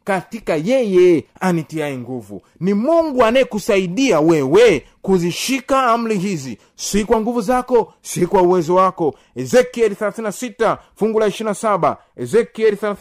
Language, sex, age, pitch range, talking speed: Swahili, male, 30-49, 170-225 Hz, 115 wpm